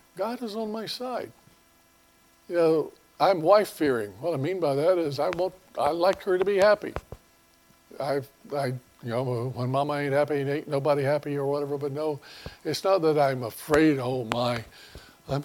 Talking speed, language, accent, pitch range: 185 wpm, English, American, 130-170 Hz